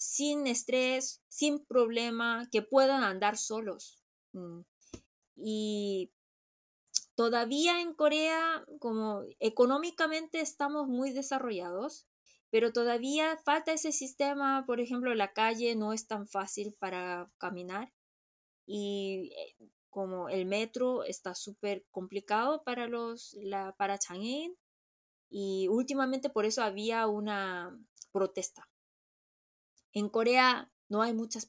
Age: 20-39